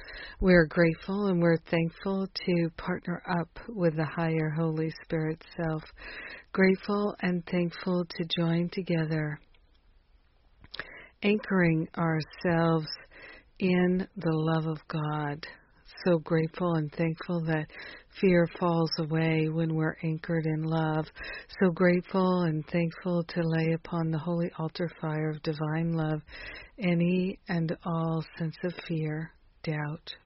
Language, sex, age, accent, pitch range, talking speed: English, female, 60-79, American, 160-175 Hz, 120 wpm